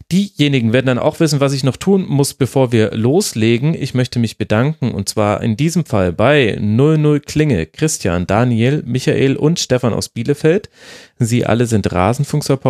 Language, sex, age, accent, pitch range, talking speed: German, male, 40-59, German, 105-135 Hz, 165 wpm